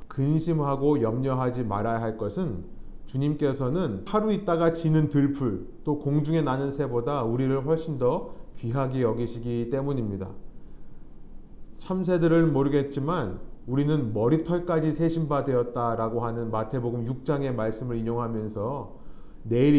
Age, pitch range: 30-49, 120-155 Hz